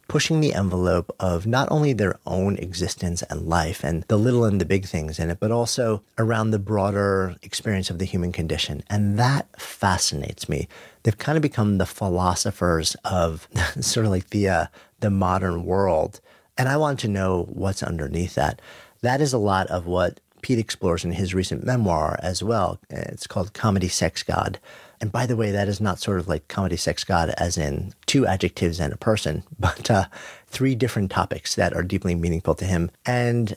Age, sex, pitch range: 50-69, male, 90-110 Hz